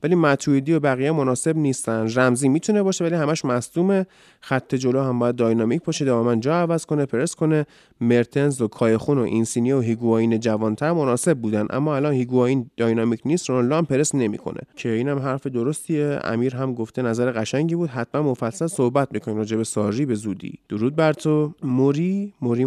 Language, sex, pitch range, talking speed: Persian, male, 115-155 Hz, 175 wpm